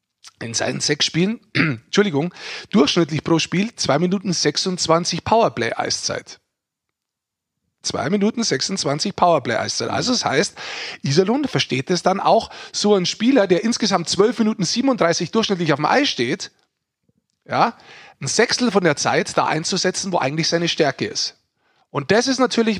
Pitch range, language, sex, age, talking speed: 155-205 Hz, German, male, 30-49, 145 wpm